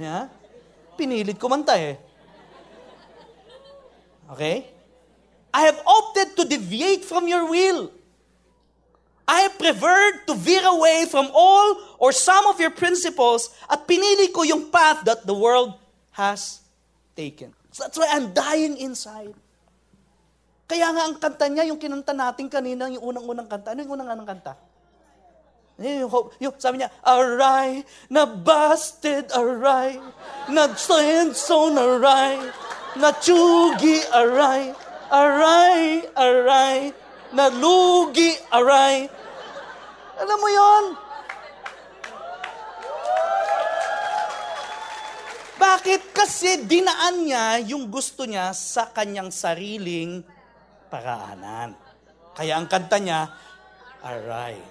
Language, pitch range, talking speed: English, 245-335 Hz, 105 wpm